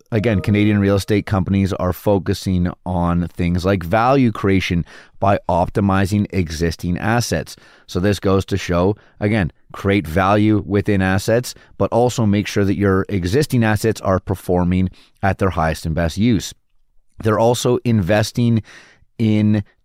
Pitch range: 90-110 Hz